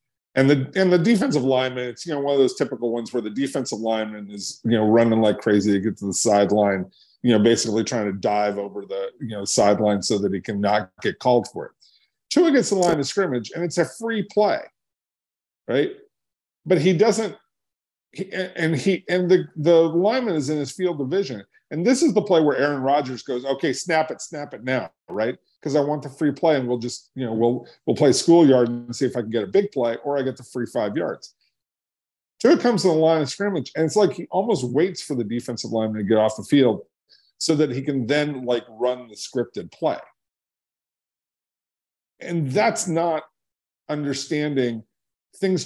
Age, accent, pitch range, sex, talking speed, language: 40-59, American, 115-170 Hz, male, 210 wpm, English